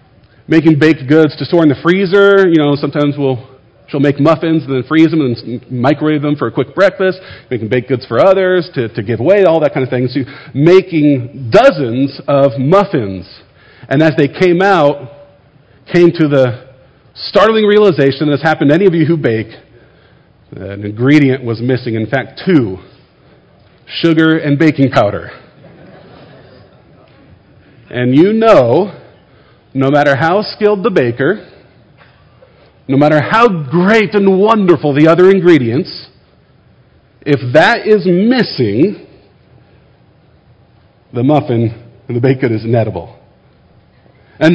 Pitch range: 130-175 Hz